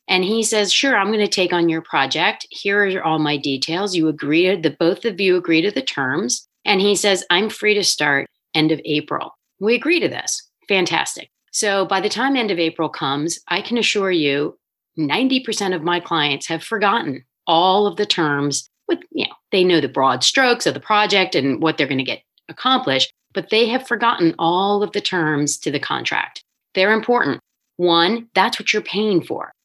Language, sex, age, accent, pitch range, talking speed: English, female, 30-49, American, 160-215 Hz, 200 wpm